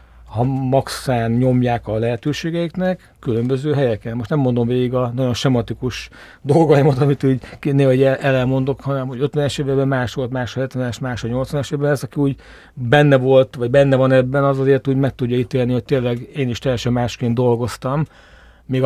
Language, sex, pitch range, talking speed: Hungarian, male, 120-135 Hz, 175 wpm